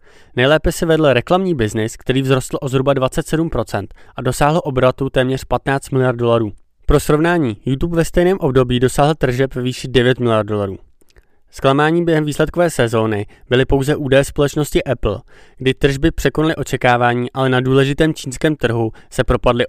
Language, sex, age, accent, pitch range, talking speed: Czech, male, 20-39, native, 115-150 Hz, 150 wpm